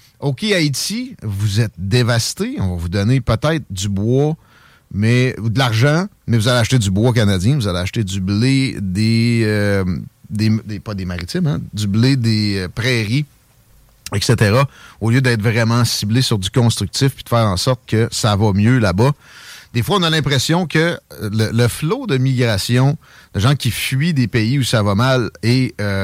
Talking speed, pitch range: 190 wpm, 110-135 Hz